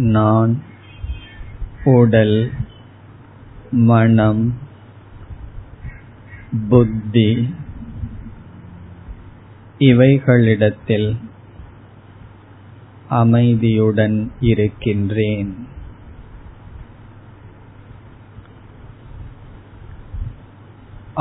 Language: Tamil